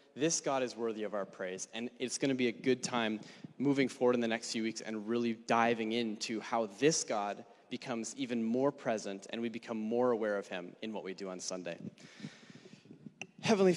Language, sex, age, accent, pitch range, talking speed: English, male, 30-49, American, 115-140 Hz, 205 wpm